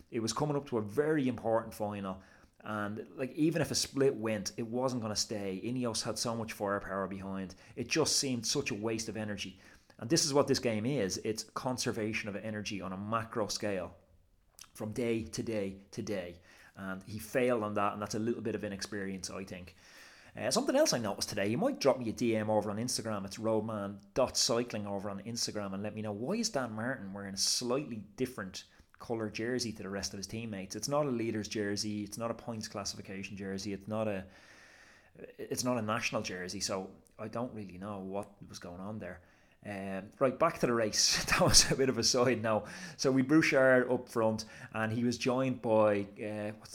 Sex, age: male, 30-49